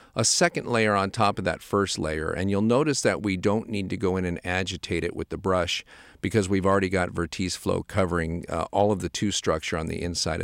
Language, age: English, 50-69